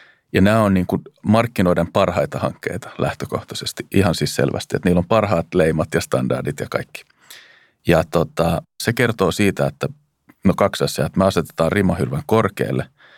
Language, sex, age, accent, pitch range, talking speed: Finnish, male, 40-59, native, 75-105 Hz, 160 wpm